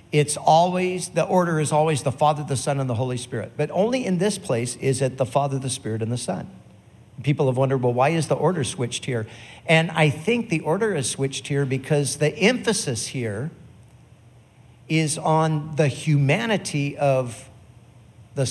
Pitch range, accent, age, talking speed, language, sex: 120-150 Hz, American, 50-69, 180 wpm, English, male